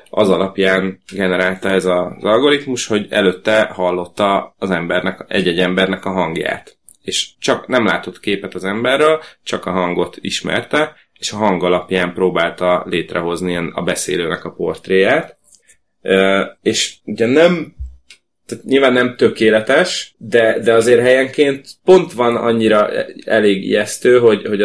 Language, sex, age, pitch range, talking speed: Hungarian, male, 30-49, 90-105 Hz, 130 wpm